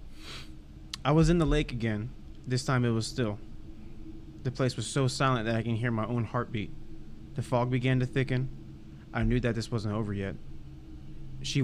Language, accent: English, American